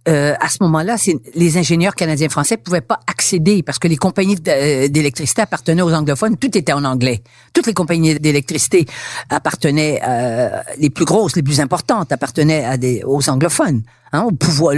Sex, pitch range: female, 145-205 Hz